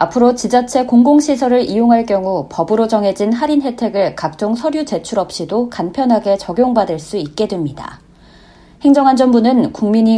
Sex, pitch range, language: female, 200-245 Hz, Korean